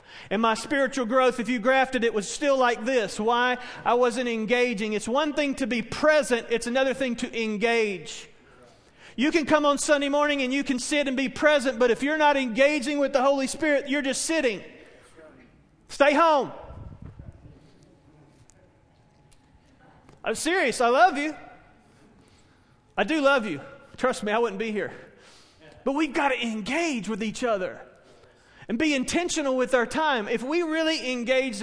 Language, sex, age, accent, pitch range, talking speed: English, male, 40-59, American, 225-275 Hz, 165 wpm